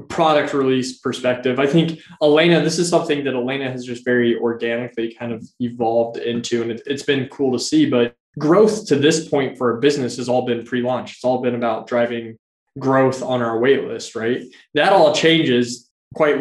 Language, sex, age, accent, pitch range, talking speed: English, male, 20-39, American, 120-145 Hz, 190 wpm